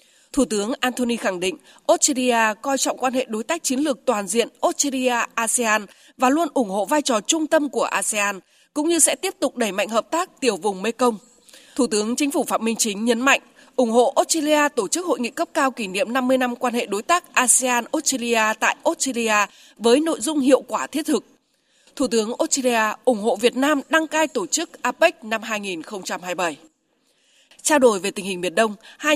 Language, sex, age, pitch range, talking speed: Vietnamese, female, 20-39, 215-290 Hz, 200 wpm